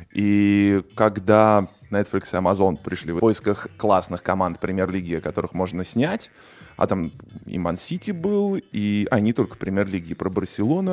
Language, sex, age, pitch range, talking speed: Russian, male, 20-39, 100-130 Hz, 145 wpm